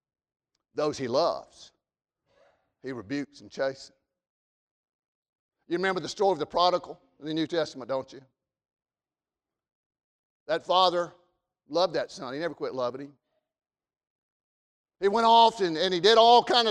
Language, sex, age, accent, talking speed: English, male, 50-69, American, 140 wpm